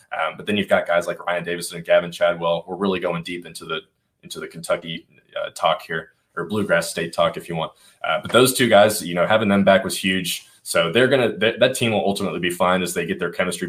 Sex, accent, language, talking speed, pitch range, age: male, American, English, 250 wpm, 85-95 Hz, 20-39